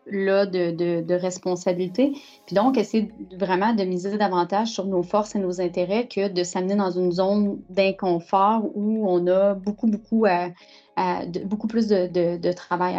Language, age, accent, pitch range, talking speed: English, 30-49, Canadian, 180-215 Hz, 185 wpm